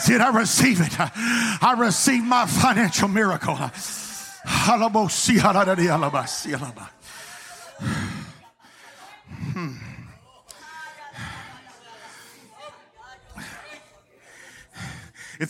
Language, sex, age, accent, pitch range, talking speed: English, male, 50-69, American, 165-215 Hz, 45 wpm